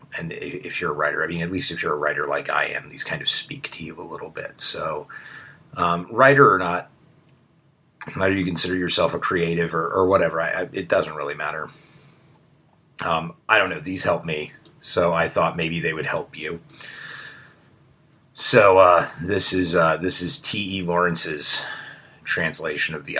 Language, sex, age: English, male, 30-49